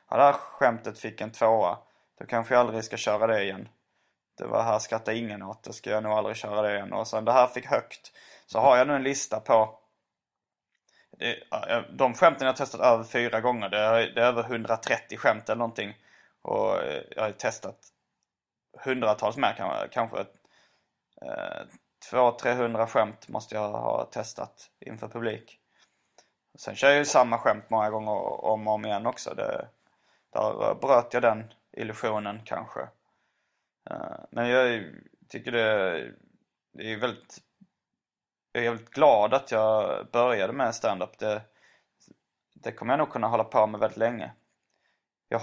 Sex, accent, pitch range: male, native, 110-125 Hz